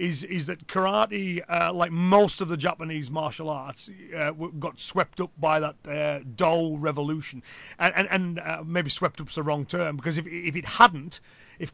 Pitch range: 150-180 Hz